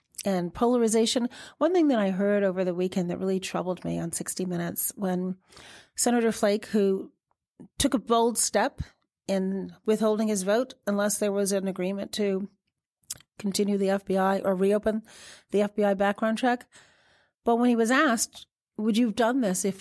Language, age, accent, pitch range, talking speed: English, 40-59, American, 195-255 Hz, 165 wpm